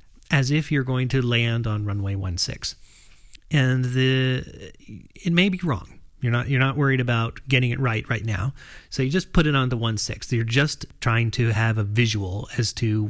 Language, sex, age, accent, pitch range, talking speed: English, male, 40-59, American, 110-140 Hz, 205 wpm